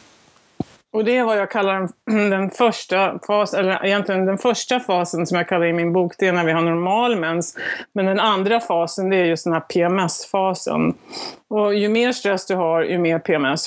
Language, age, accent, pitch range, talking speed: Swedish, 30-49, native, 170-210 Hz, 200 wpm